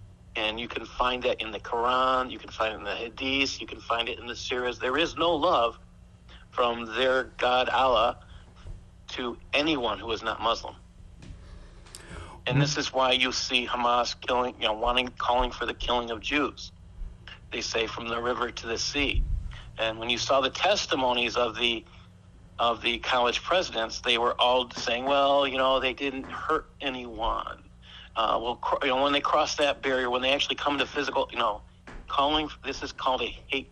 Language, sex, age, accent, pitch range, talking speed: English, male, 50-69, American, 105-130 Hz, 190 wpm